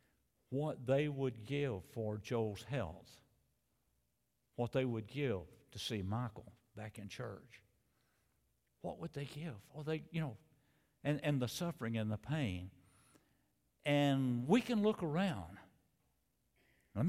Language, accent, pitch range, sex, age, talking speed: English, American, 105-140 Hz, male, 60-79, 135 wpm